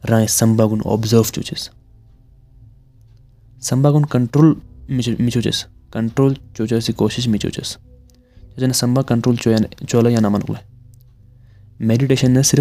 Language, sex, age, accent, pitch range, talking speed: Hindi, male, 20-39, native, 105-125 Hz, 70 wpm